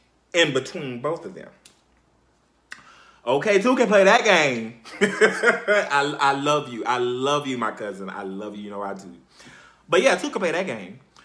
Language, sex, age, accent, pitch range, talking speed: English, male, 30-49, American, 105-150 Hz, 180 wpm